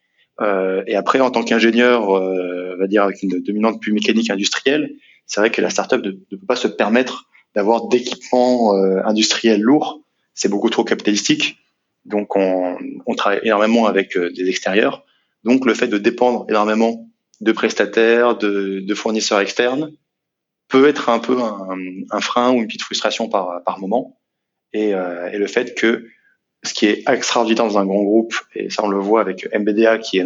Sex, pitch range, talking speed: male, 100-125 Hz, 180 wpm